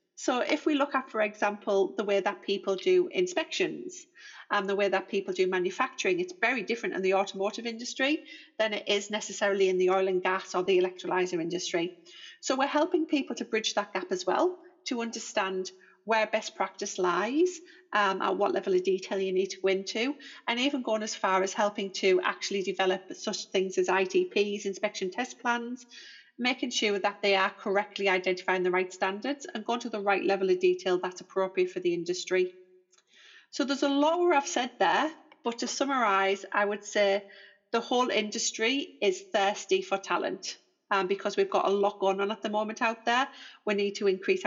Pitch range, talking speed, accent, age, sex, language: 190-260 Hz, 195 wpm, British, 40-59, female, English